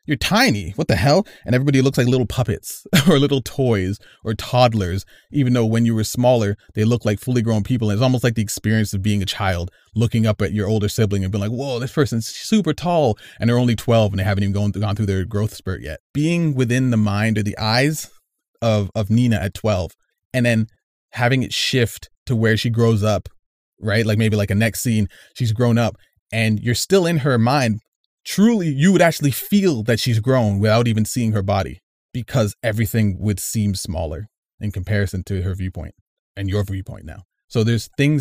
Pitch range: 100-125 Hz